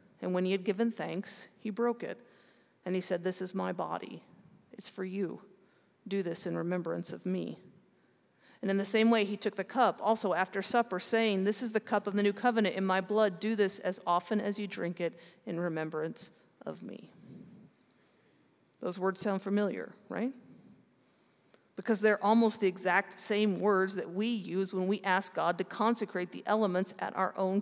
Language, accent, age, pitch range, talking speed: English, American, 40-59, 185-220 Hz, 190 wpm